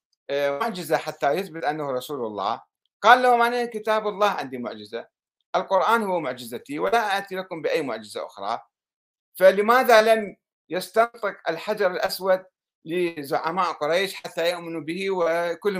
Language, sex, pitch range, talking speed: Arabic, male, 165-220 Hz, 120 wpm